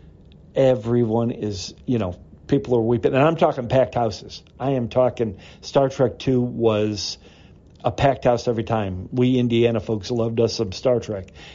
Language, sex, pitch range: English, male, 100-125 Hz